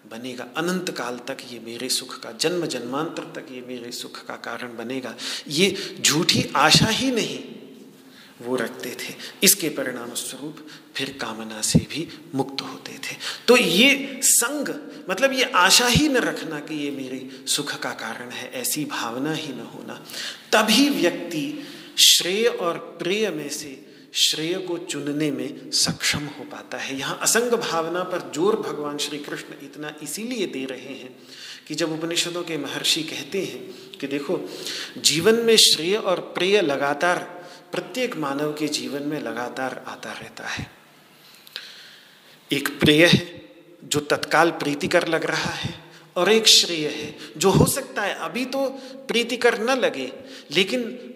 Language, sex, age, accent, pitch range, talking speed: Hindi, male, 40-59, native, 140-215 Hz, 155 wpm